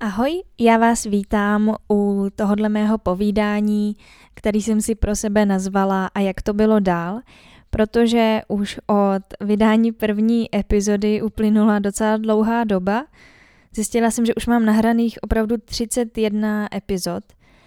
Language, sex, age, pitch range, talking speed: Czech, female, 10-29, 205-230 Hz, 130 wpm